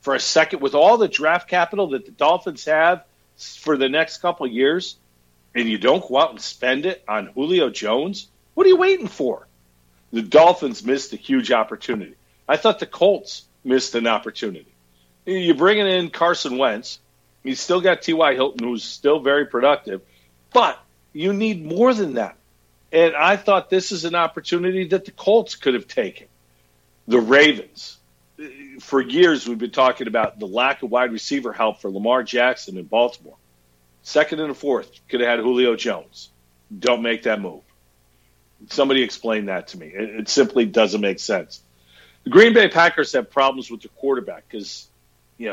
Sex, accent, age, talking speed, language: male, American, 50-69, 175 wpm, English